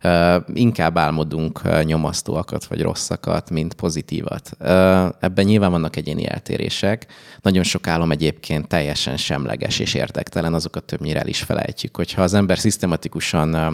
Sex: male